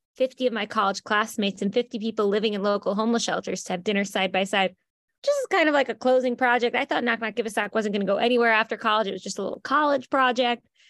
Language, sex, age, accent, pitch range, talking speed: English, female, 20-39, American, 195-240 Hz, 260 wpm